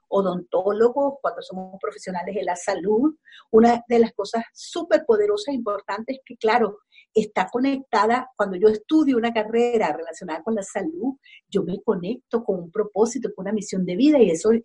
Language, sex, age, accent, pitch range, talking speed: Spanish, female, 50-69, American, 195-250 Hz, 170 wpm